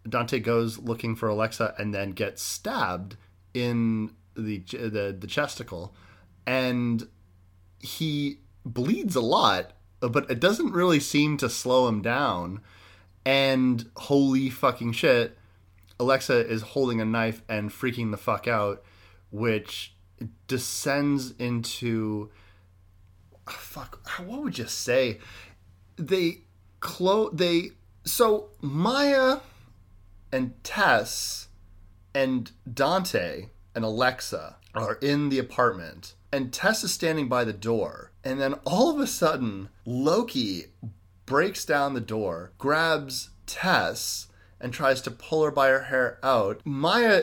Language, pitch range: English, 100-145 Hz